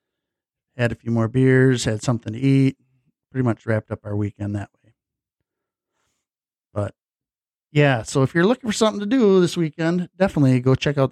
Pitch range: 115-135 Hz